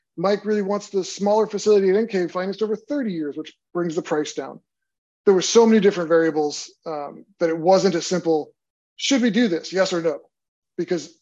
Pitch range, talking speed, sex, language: 165-195 Hz, 200 wpm, male, English